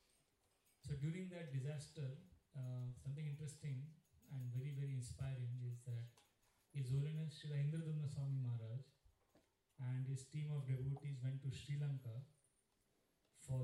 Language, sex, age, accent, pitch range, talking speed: English, male, 30-49, Indian, 125-145 Hz, 130 wpm